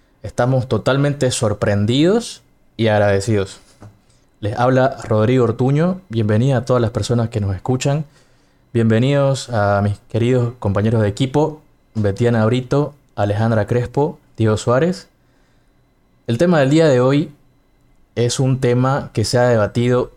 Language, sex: Spanish, male